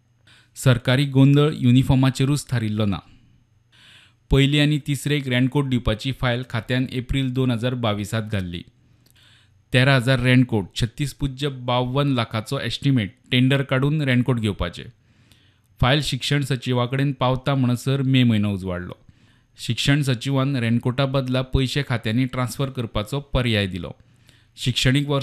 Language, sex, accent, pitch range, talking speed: English, male, Indian, 115-135 Hz, 75 wpm